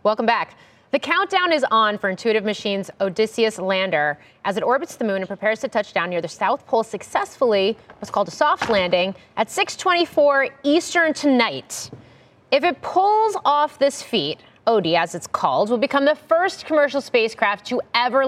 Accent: American